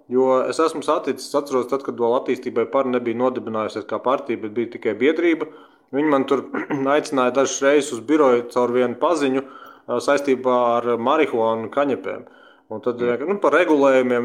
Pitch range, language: 120-145 Hz, English